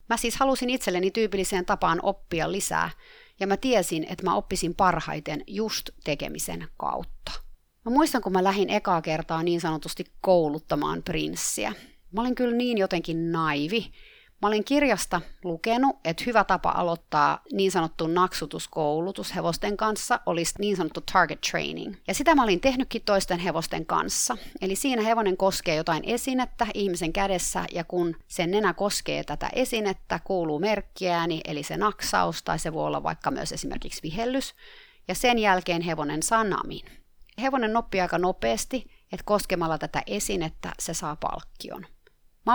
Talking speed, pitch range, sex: 150 wpm, 170-230 Hz, female